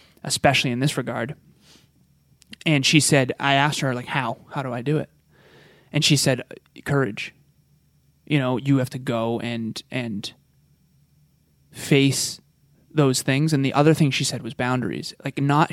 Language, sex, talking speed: English, male, 160 wpm